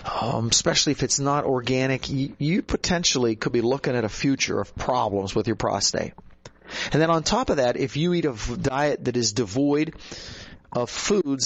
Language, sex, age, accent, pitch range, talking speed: English, male, 40-59, American, 120-150 Hz, 190 wpm